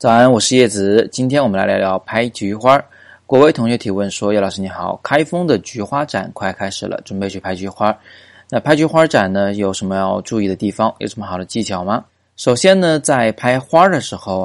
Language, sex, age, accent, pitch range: Chinese, male, 20-39, native, 95-115 Hz